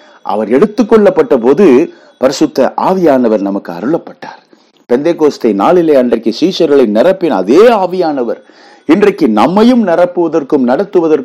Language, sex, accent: English, male, Indian